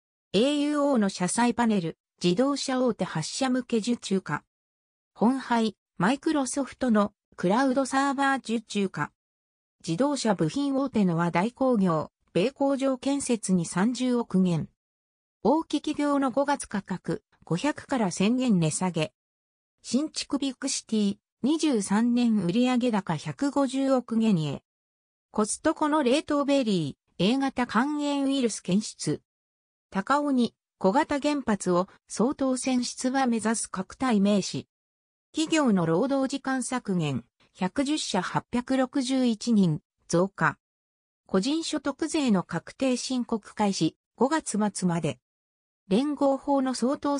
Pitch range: 180-270 Hz